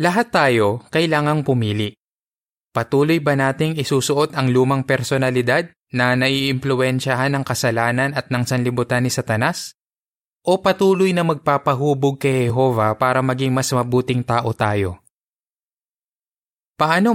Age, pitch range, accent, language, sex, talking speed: 20-39, 120-145 Hz, native, Filipino, male, 115 wpm